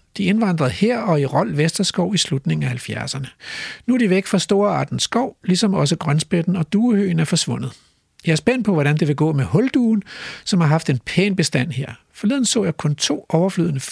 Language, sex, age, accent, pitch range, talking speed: Danish, male, 60-79, native, 150-205 Hz, 210 wpm